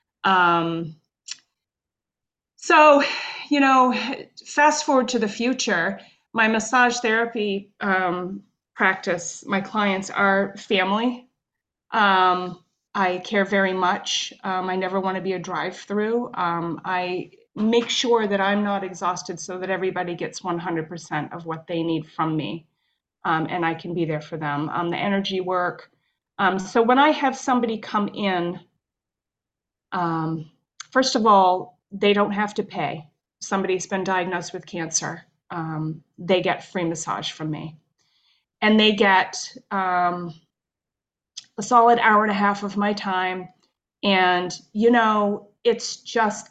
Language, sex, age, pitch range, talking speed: English, female, 30-49, 175-220 Hz, 140 wpm